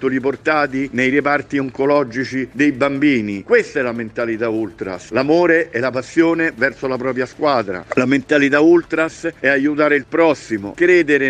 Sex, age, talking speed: male, 50-69, 145 wpm